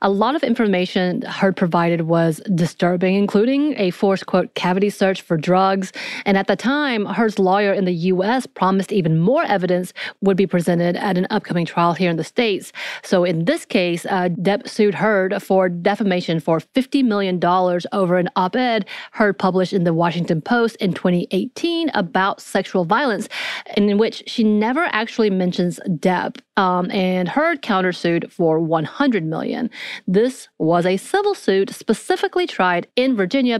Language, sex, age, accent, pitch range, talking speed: English, female, 30-49, American, 180-225 Hz, 160 wpm